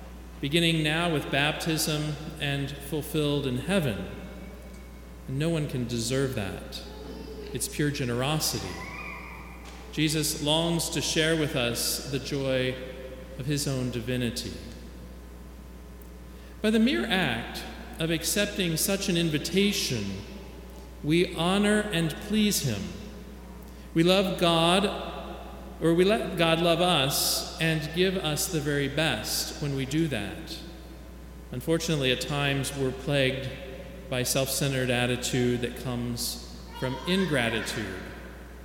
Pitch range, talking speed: 120-165 Hz, 115 wpm